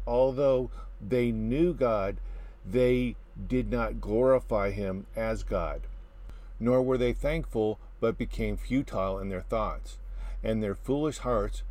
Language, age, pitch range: English, 50-69, 100-130 Hz